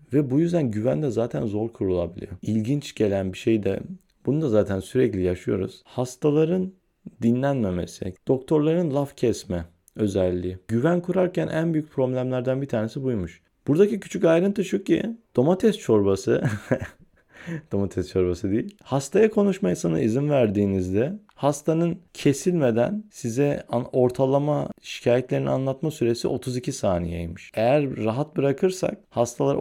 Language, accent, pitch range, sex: Turkish, native, 100-150 Hz, male